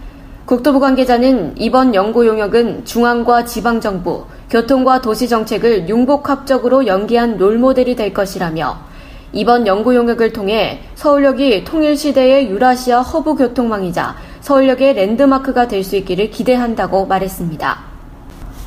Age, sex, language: 20-39, female, Korean